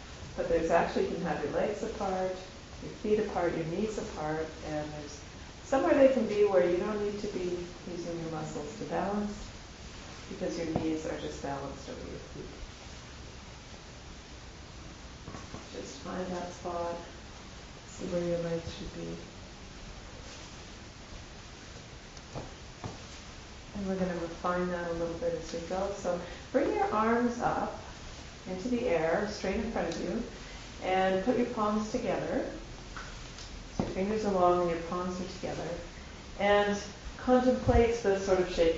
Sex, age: female, 40-59